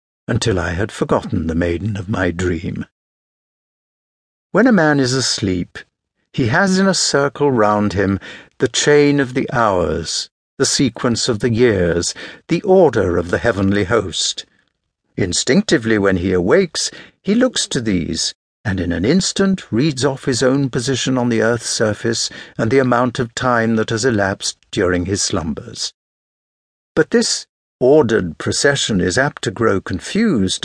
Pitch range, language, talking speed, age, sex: 95-150 Hz, English, 155 wpm, 60-79, male